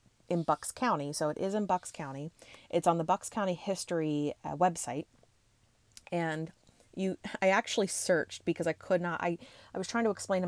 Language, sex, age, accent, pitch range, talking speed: English, female, 30-49, American, 150-190 Hz, 185 wpm